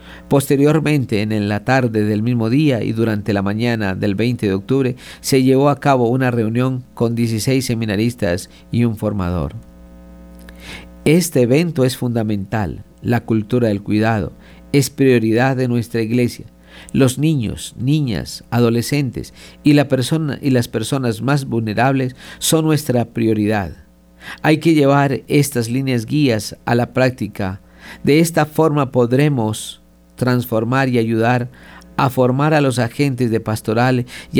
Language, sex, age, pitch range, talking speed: Spanish, male, 50-69, 105-130 Hz, 135 wpm